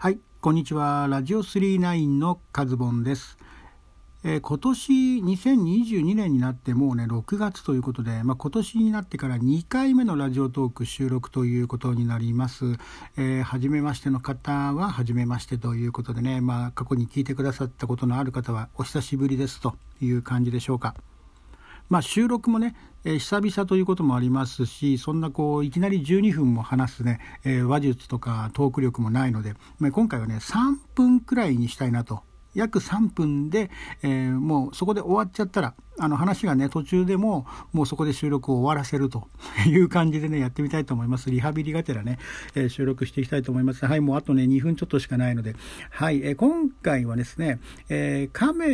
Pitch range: 125-175 Hz